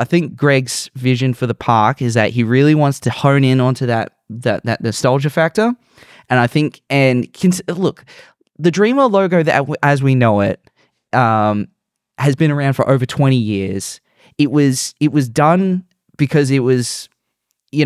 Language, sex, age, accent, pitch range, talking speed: English, male, 20-39, Australian, 115-145 Hz, 170 wpm